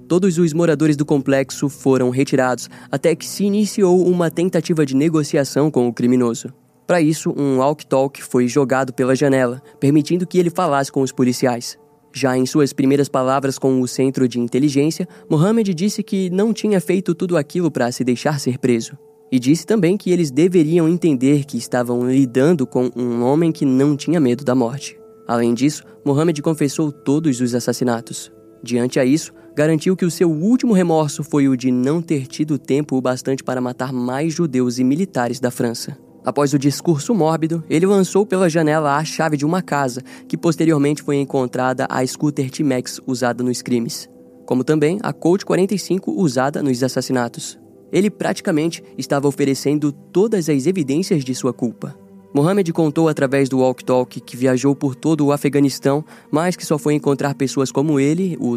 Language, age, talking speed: Portuguese, 20-39, 175 wpm